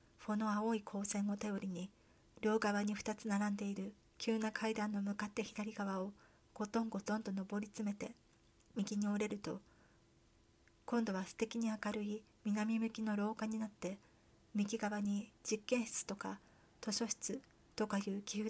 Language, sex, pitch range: Japanese, female, 200-220 Hz